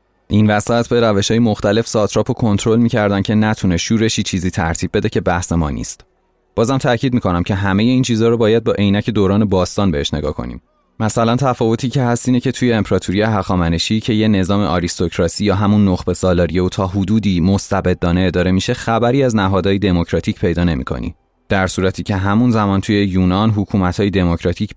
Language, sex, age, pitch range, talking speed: Persian, male, 30-49, 90-110 Hz, 170 wpm